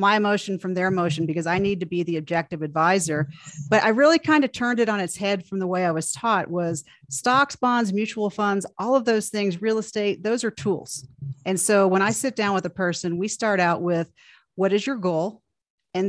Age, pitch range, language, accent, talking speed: 40-59, 175-215 Hz, English, American, 230 wpm